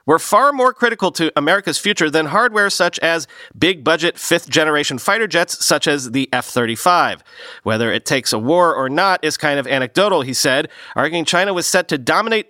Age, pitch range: 40-59, 145-190 Hz